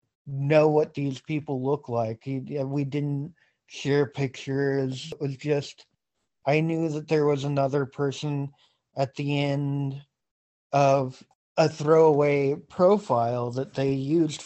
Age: 40-59